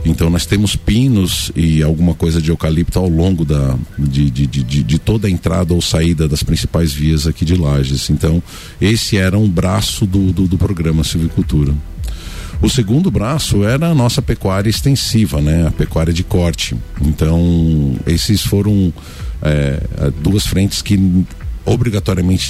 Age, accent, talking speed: 50-69, Brazilian, 145 wpm